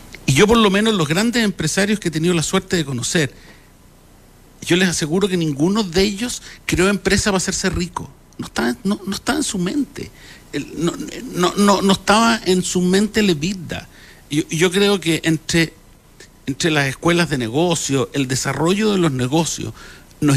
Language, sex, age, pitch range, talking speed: Spanish, male, 60-79, 135-190 Hz, 175 wpm